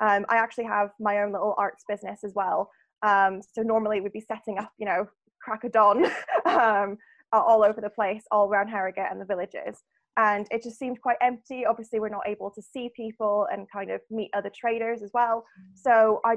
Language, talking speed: English, 205 wpm